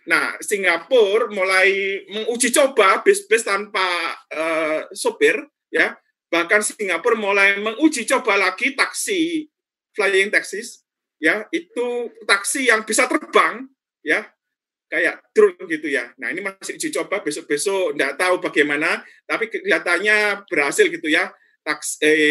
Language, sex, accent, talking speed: Indonesian, male, native, 120 wpm